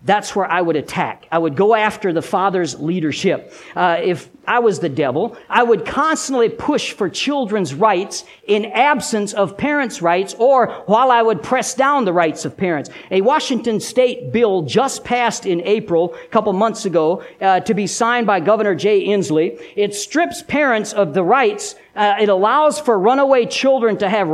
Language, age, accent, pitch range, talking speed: English, 50-69, American, 185-245 Hz, 185 wpm